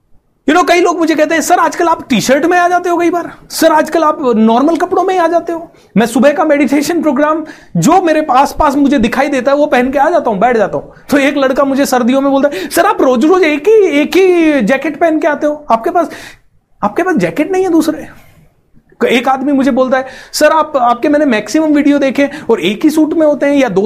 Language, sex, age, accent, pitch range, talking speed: Hindi, male, 30-49, native, 230-305 Hz, 250 wpm